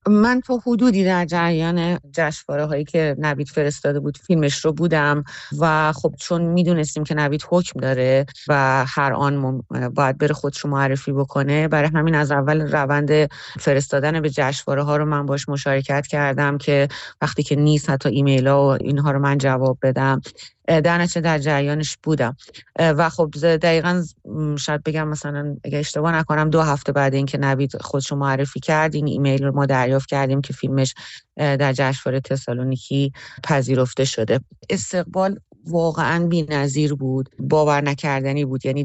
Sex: female